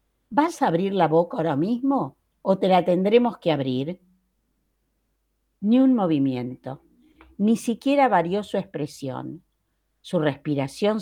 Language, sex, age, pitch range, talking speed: Spanish, female, 50-69, 150-215 Hz, 125 wpm